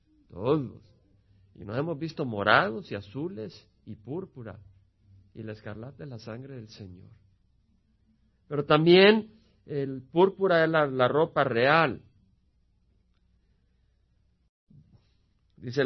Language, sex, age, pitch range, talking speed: Spanish, male, 50-69, 115-170 Hz, 105 wpm